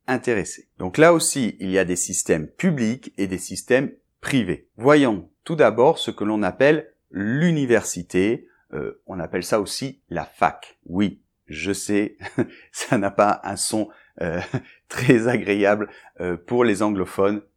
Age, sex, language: 30-49, male, French